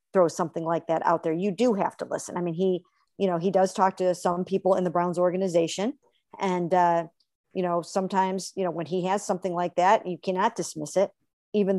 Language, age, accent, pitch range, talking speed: English, 50-69, American, 180-220 Hz, 225 wpm